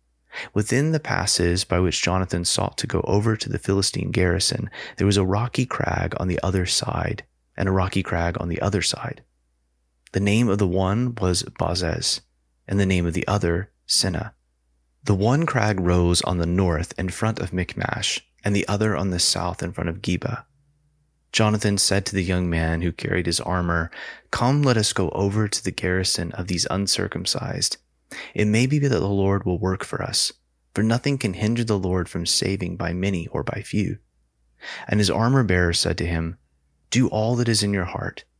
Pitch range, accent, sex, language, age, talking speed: 85-110 Hz, American, male, English, 30-49, 190 wpm